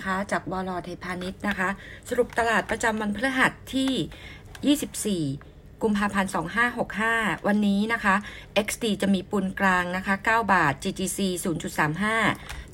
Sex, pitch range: female, 175-215 Hz